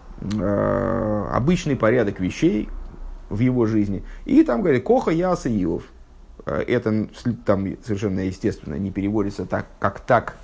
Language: Russian